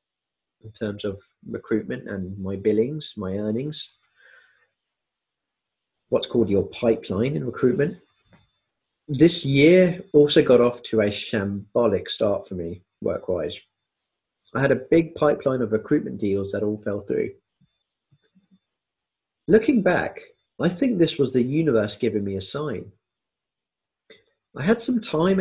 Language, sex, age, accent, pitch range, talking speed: English, male, 30-49, British, 105-155 Hz, 130 wpm